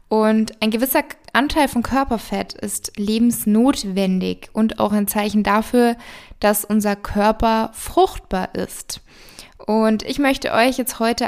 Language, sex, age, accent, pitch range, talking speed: German, female, 20-39, German, 210-240 Hz, 130 wpm